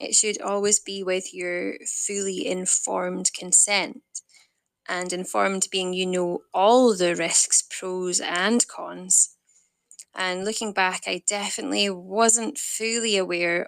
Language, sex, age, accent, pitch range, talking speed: English, female, 20-39, British, 185-220 Hz, 125 wpm